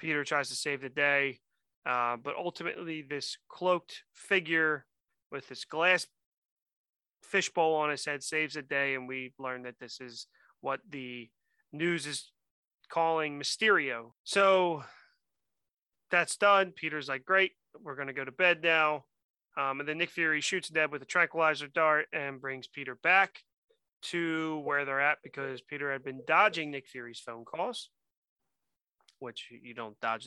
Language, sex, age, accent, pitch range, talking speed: English, male, 30-49, American, 130-165 Hz, 155 wpm